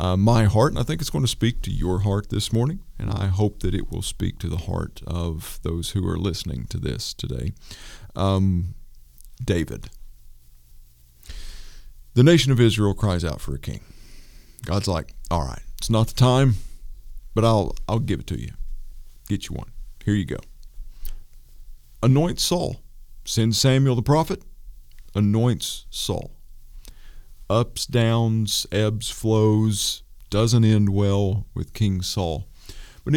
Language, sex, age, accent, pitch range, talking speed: English, male, 50-69, American, 80-115 Hz, 150 wpm